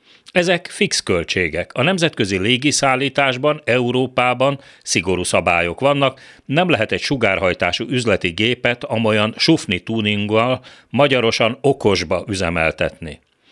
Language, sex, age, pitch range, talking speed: Hungarian, male, 40-59, 95-140 Hz, 100 wpm